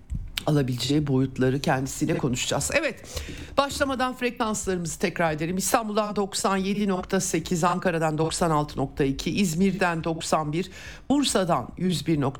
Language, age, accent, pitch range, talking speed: Turkish, 60-79, native, 150-190 Hz, 75 wpm